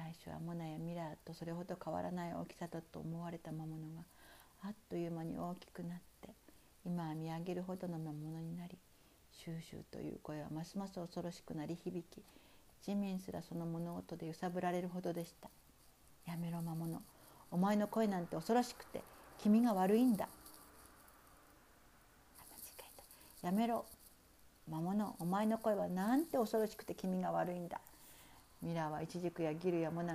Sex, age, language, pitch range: female, 50-69, Japanese, 165-195 Hz